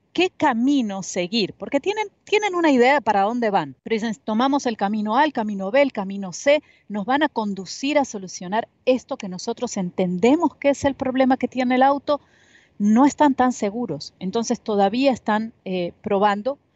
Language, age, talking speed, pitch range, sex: Spanish, 40-59, 185 wpm, 185-260 Hz, female